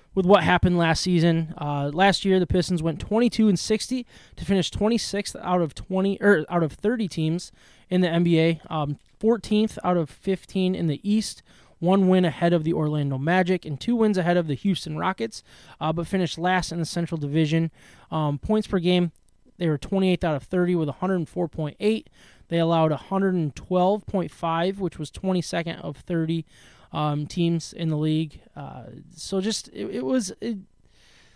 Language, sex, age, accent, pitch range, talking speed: English, male, 20-39, American, 155-190 Hz, 175 wpm